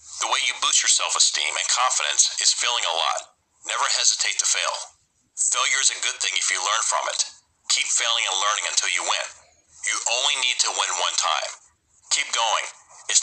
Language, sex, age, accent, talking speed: English, male, 40-59, American, 195 wpm